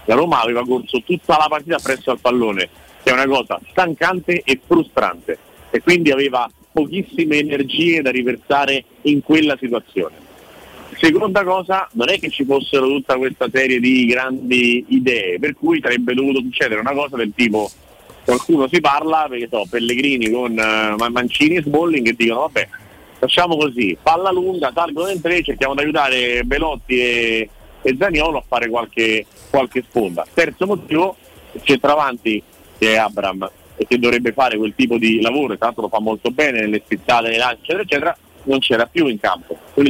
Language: Italian